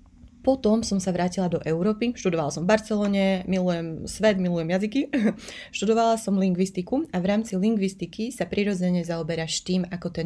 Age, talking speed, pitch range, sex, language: 30-49, 160 wpm, 165-190 Hz, female, Slovak